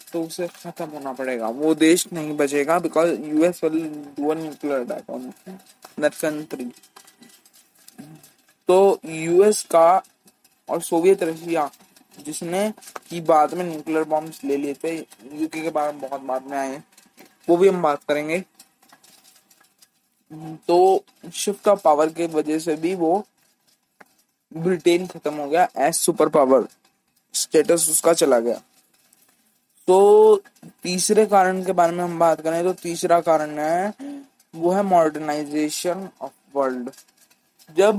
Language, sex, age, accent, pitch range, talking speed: Hindi, male, 20-39, native, 155-190 Hz, 125 wpm